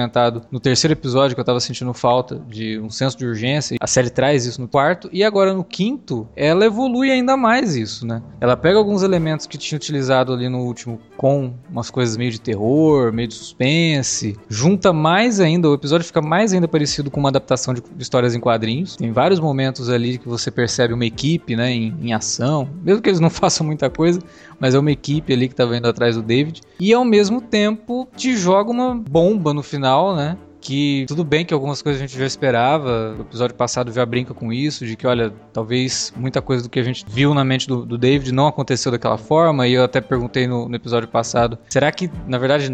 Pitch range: 125-165 Hz